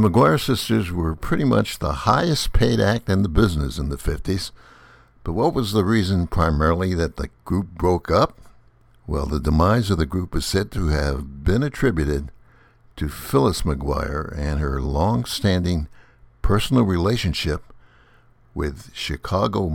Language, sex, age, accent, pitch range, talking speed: English, male, 60-79, American, 80-110 Hz, 150 wpm